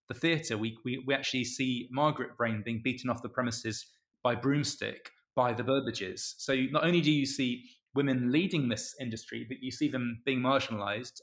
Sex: male